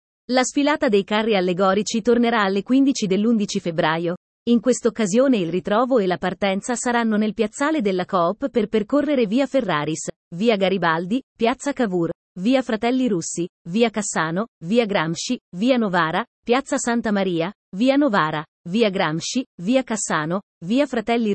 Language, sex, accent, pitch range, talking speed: Italian, female, native, 185-245 Hz, 140 wpm